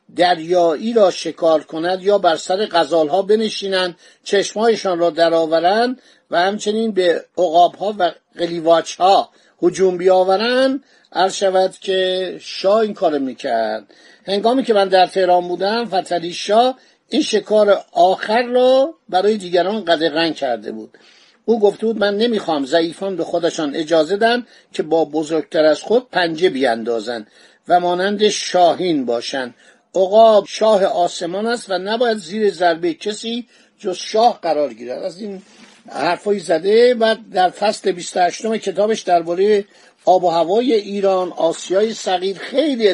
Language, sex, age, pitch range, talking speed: Persian, male, 50-69, 175-215 Hz, 135 wpm